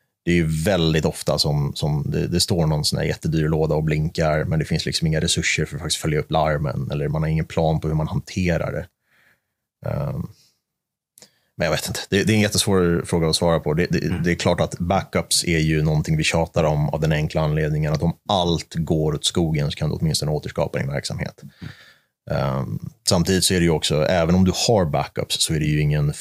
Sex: male